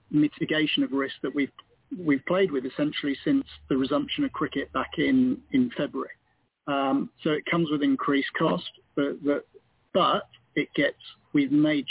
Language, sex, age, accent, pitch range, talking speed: English, male, 40-59, British, 140-160 Hz, 155 wpm